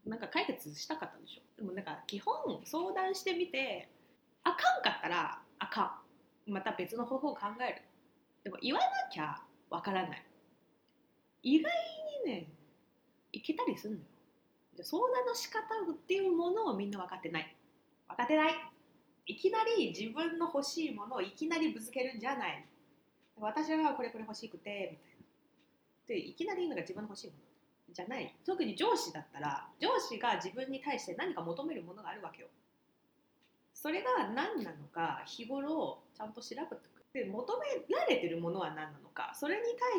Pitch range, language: 215-350 Hz, Japanese